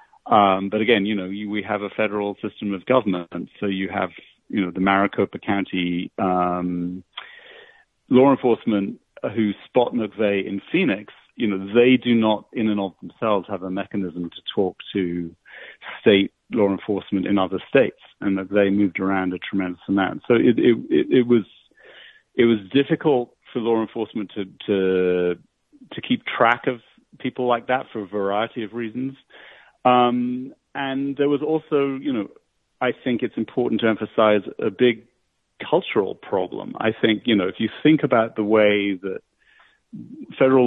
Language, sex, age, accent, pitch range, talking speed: English, male, 40-59, British, 95-120 Hz, 165 wpm